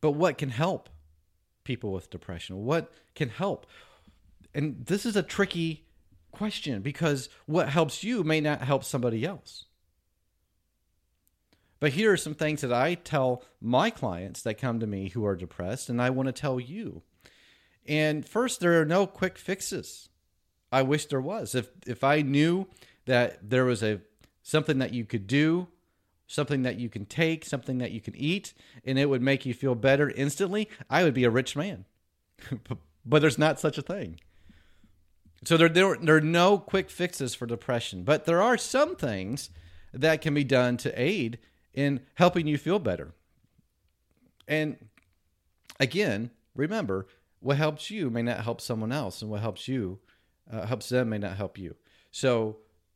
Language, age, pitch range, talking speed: English, 30-49, 100-155 Hz, 170 wpm